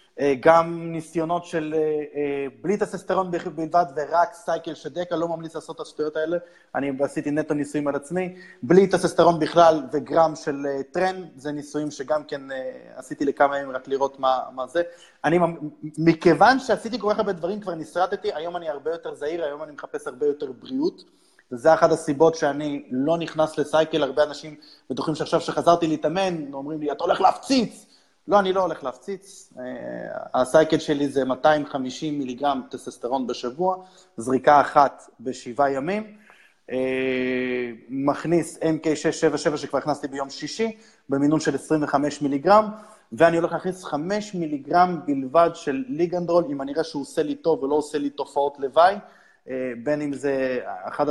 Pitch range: 140-175 Hz